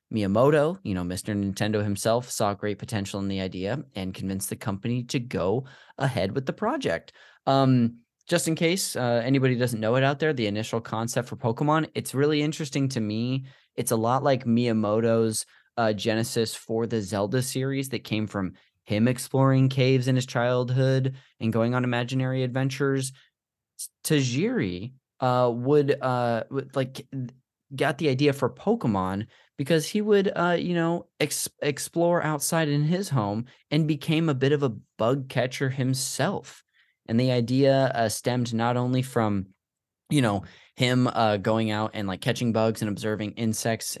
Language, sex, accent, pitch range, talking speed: English, male, American, 110-135 Hz, 165 wpm